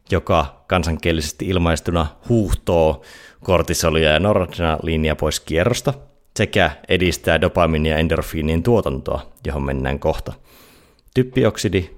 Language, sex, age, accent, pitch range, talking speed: Finnish, male, 30-49, native, 80-110 Hz, 95 wpm